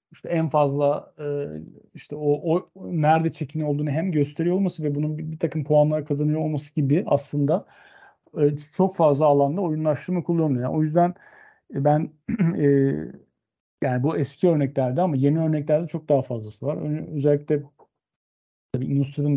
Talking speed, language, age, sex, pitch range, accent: 135 wpm, Turkish, 40-59, male, 140-160 Hz, native